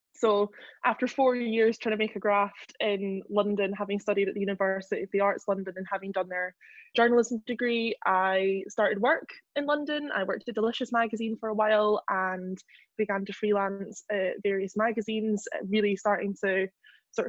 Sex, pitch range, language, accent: female, 200-235 Hz, English, British